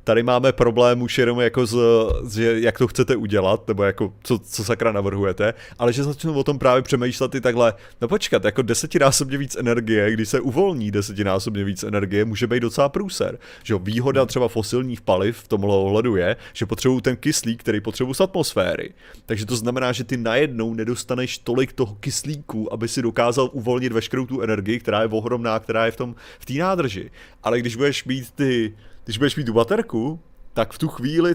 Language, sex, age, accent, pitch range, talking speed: Czech, male, 30-49, native, 115-135 Hz, 195 wpm